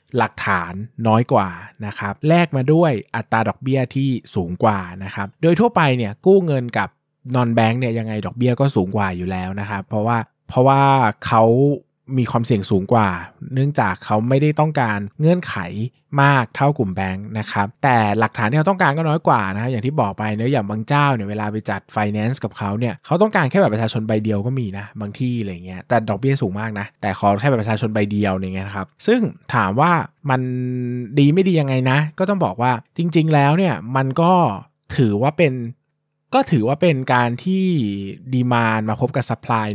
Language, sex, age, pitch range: Thai, male, 20-39, 105-145 Hz